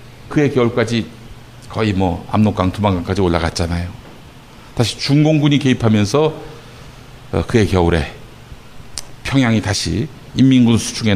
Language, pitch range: Korean, 110-155 Hz